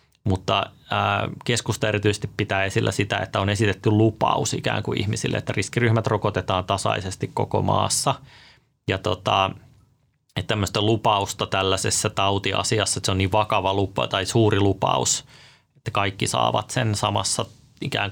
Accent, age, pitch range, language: native, 30-49, 95-115 Hz, Finnish